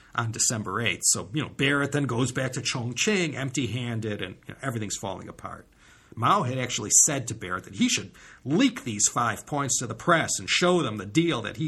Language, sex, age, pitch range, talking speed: English, male, 50-69, 115-155 Hz, 220 wpm